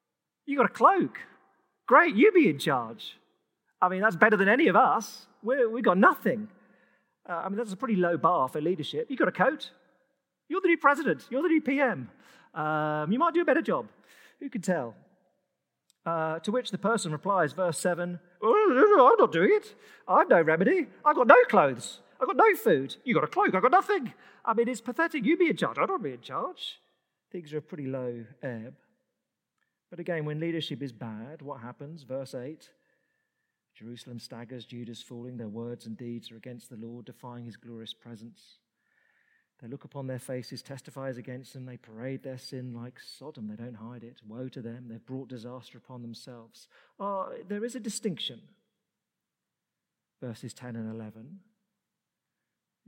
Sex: male